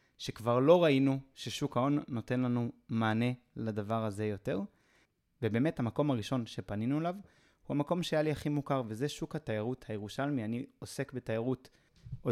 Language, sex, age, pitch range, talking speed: Hebrew, male, 20-39, 110-140 Hz, 145 wpm